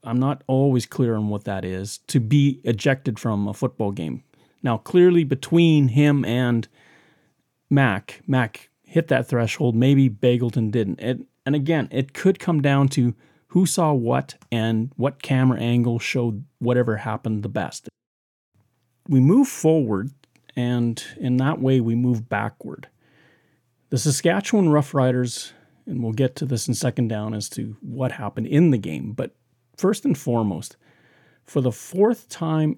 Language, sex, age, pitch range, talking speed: English, male, 30-49, 115-150 Hz, 155 wpm